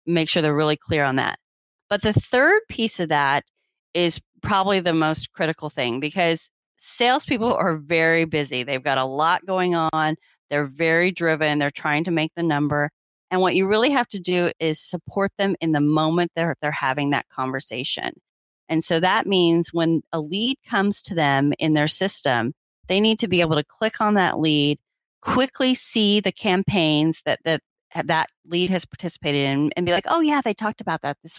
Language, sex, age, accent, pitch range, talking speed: English, female, 30-49, American, 150-185 Hz, 195 wpm